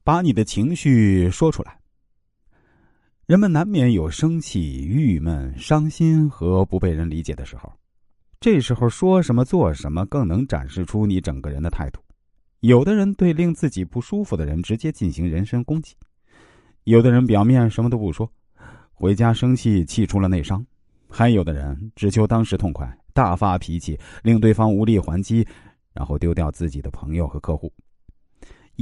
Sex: male